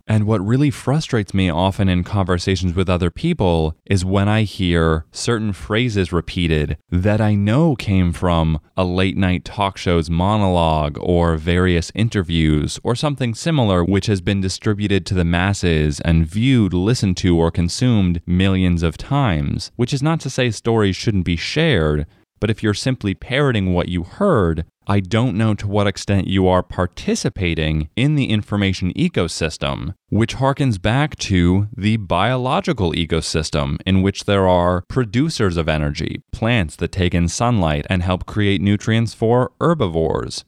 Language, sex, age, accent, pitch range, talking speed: English, male, 20-39, American, 85-115 Hz, 155 wpm